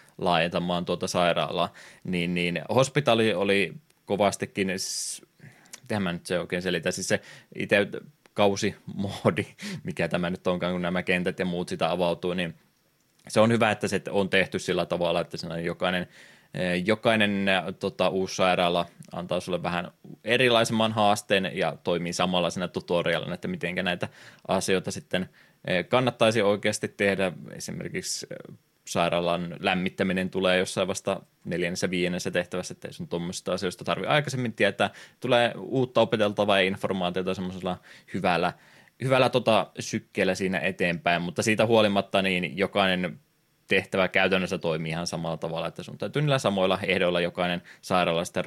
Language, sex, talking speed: Finnish, male, 130 wpm